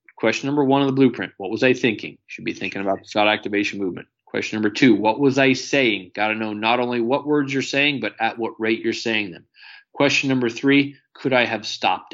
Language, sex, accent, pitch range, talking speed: English, male, American, 115-145 Hz, 235 wpm